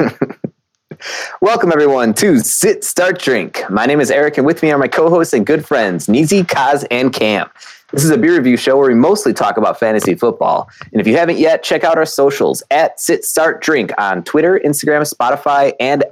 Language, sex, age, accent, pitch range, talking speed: English, male, 20-39, American, 110-145 Hz, 200 wpm